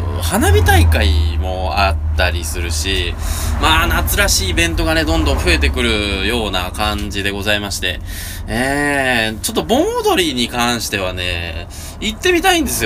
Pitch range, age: 80-115 Hz, 20-39